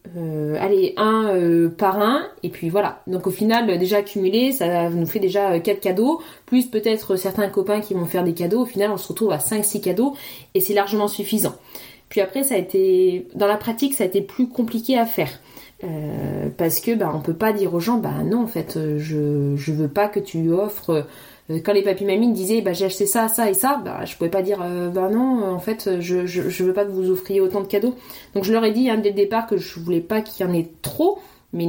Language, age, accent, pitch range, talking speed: French, 20-39, French, 185-225 Hz, 250 wpm